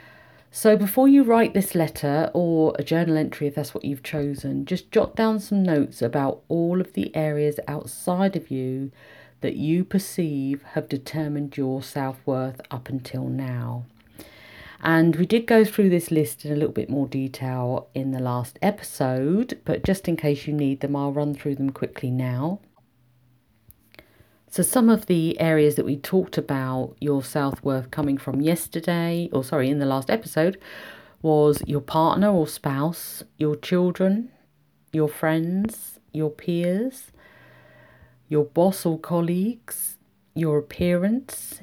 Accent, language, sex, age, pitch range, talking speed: British, English, female, 50-69, 135-175 Hz, 150 wpm